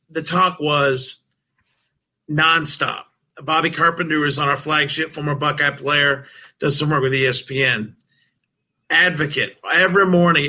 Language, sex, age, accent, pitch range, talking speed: English, male, 40-59, American, 150-205 Hz, 120 wpm